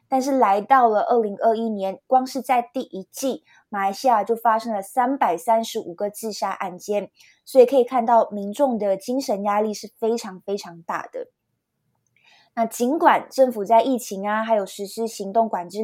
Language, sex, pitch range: Chinese, female, 200-245 Hz